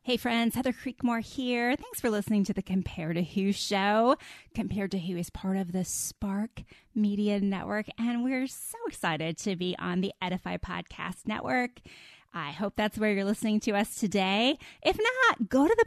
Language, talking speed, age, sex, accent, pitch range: English, 185 wpm, 20-39, female, American, 190-250 Hz